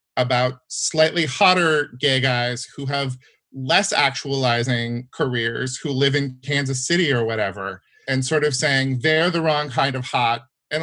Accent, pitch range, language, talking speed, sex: American, 135-185 Hz, English, 155 wpm, male